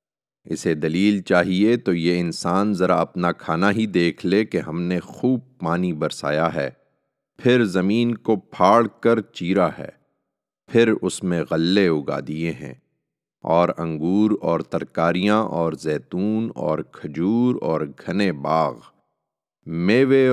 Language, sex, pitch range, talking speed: Urdu, male, 80-105 Hz, 135 wpm